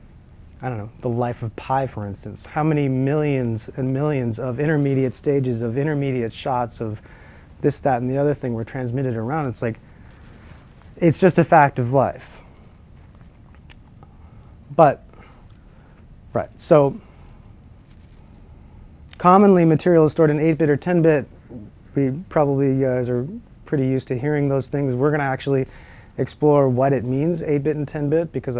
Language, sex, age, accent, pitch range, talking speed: English, male, 30-49, American, 120-150 Hz, 150 wpm